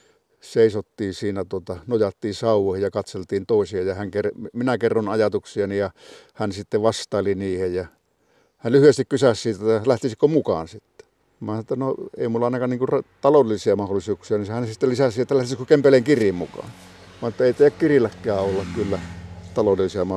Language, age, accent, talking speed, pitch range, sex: Finnish, 50-69, native, 145 wpm, 105-130 Hz, male